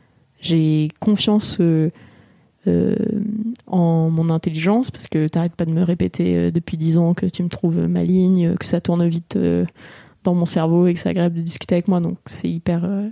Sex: female